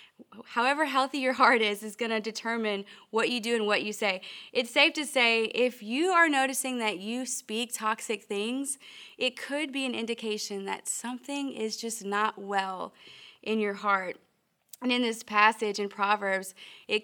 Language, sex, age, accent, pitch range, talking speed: English, female, 20-39, American, 210-245 Hz, 175 wpm